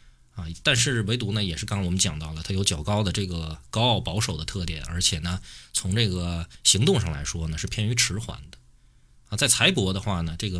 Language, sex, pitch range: Chinese, male, 80-120 Hz